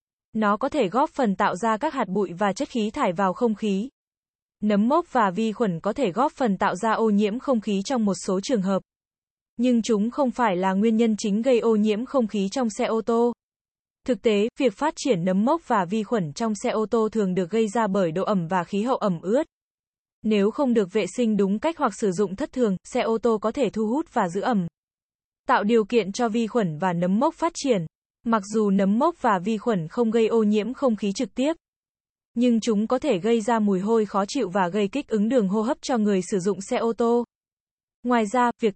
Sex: female